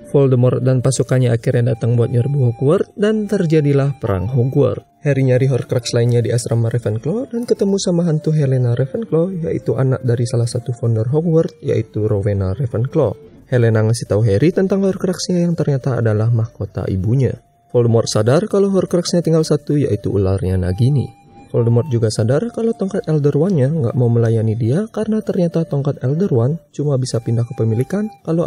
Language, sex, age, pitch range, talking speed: Indonesian, male, 20-39, 115-155 Hz, 160 wpm